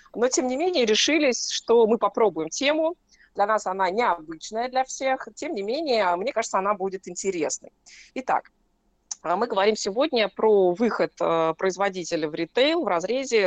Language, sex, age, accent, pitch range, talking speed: Russian, female, 30-49, native, 190-255 Hz, 150 wpm